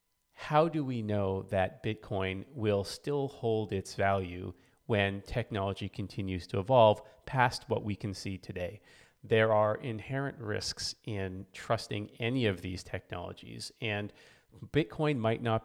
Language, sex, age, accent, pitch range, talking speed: English, male, 30-49, American, 95-115 Hz, 140 wpm